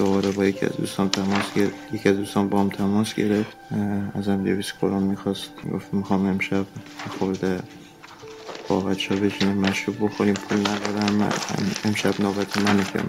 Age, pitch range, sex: 20-39, 100-105 Hz, male